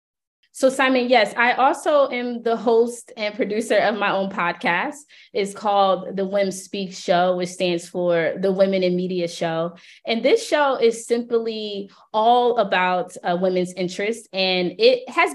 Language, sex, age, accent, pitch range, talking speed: English, female, 20-39, American, 180-230 Hz, 160 wpm